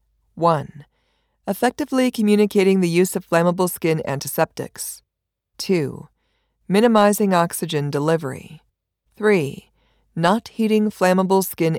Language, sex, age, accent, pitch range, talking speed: English, female, 40-59, American, 155-205 Hz, 90 wpm